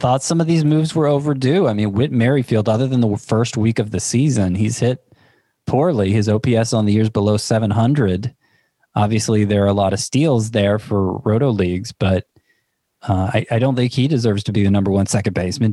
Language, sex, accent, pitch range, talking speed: English, male, American, 105-135 Hz, 210 wpm